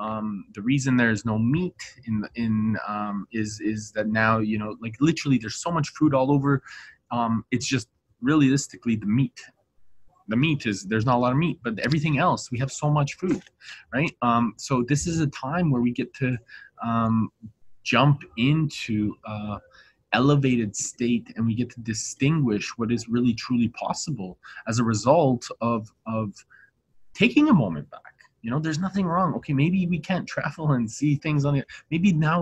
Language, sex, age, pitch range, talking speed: English, male, 20-39, 115-155 Hz, 185 wpm